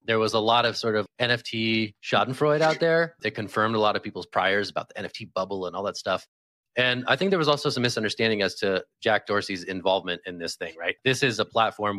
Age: 30-49